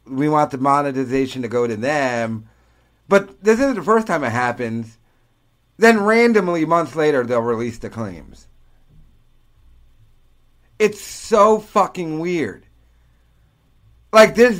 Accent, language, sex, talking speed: American, English, male, 125 wpm